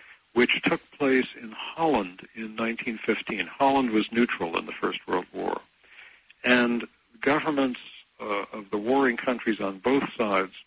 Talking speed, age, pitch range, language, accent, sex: 140 wpm, 60-79, 105-130 Hz, English, American, male